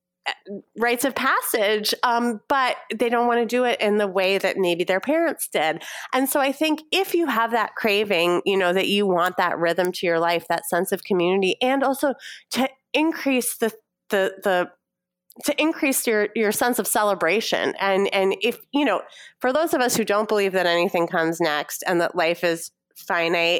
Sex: female